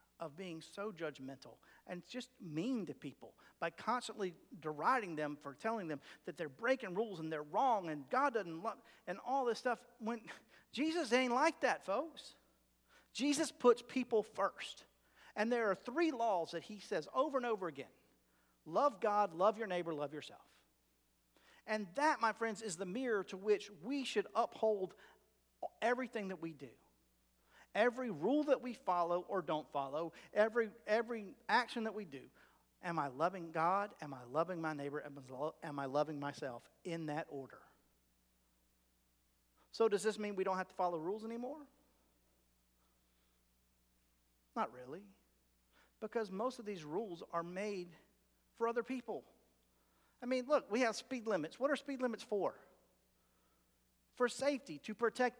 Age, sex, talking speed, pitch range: 50-69, male, 155 wpm, 145-235 Hz